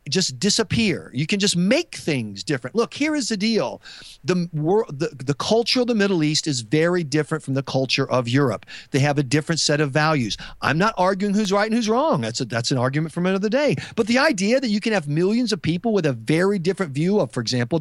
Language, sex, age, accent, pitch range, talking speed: English, male, 40-59, American, 150-220 Hz, 240 wpm